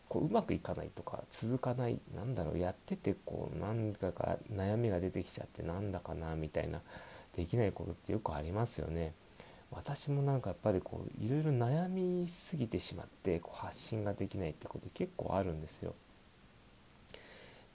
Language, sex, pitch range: Japanese, male, 90-140 Hz